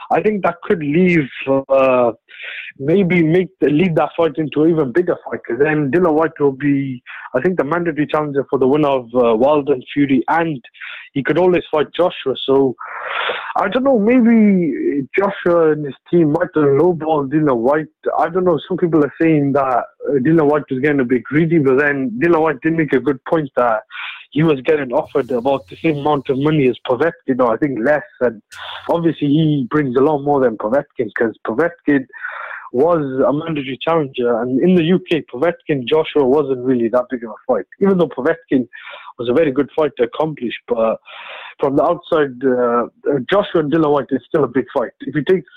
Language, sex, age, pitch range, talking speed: English, male, 30-49, 135-170 Hz, 200 wpm